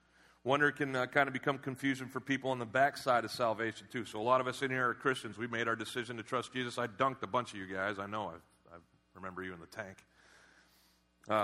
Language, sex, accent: English, male, American